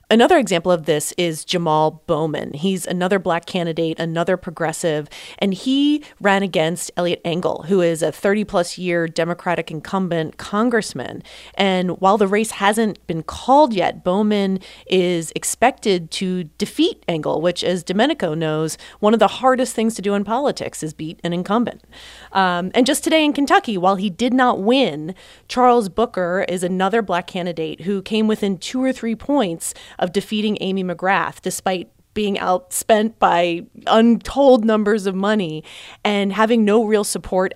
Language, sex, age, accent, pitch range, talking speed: English, female, 30-49, American, 170-220 Hz, 160 wpm